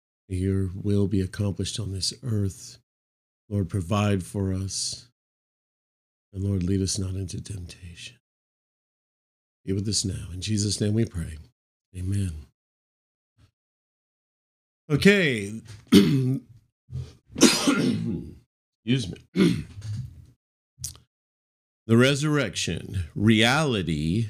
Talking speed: 85 wpm